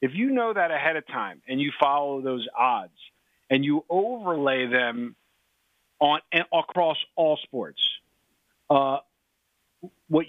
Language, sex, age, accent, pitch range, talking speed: English, male, 50-69, American, 130-160 Hz, 135 wpm